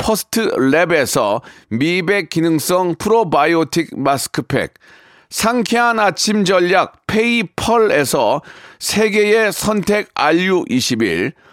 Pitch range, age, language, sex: 175-225 Hz, 40-59, Korean, male